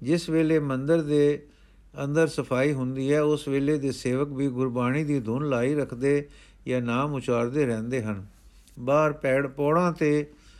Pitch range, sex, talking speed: 125-150 Hz, male, 155 wpm